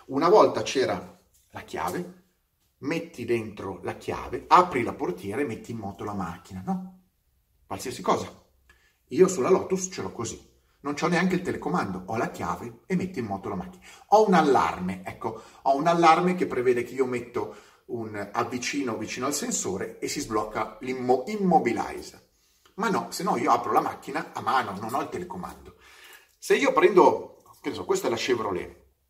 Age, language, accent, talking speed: 30-49, Italian, native, 175 wpm